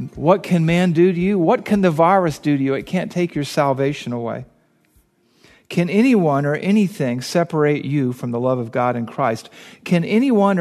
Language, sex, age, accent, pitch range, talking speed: English, male, 50-69, American, 130-175 Hz, 190 wpm